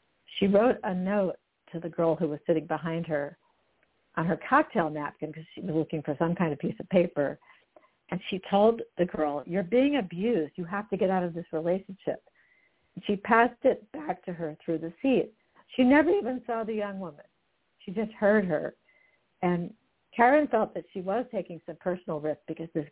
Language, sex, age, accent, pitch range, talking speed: English, female, 60-79, American, 165-200 Hz, 195 wpm